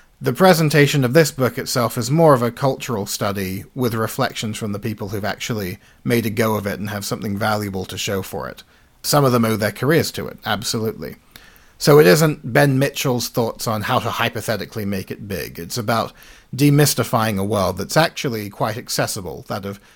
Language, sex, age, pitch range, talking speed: English, male, 40-59, 105-125 Hz, 195 wpm